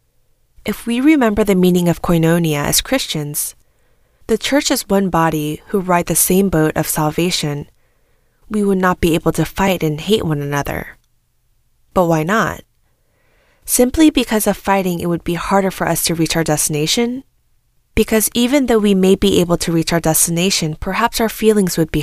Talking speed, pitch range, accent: 175 wpm, 165-210 Hz, American